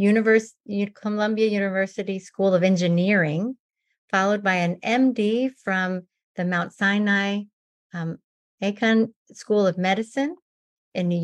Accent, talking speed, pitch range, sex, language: American, 105 wpm, 180-225 Hz, female, English